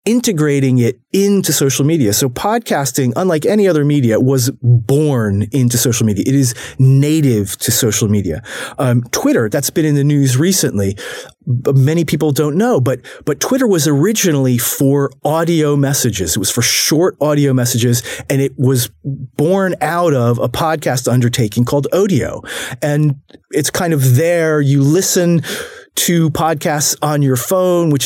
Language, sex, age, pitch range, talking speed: English, male, 30-49, 125-155 Hz, 155 wpm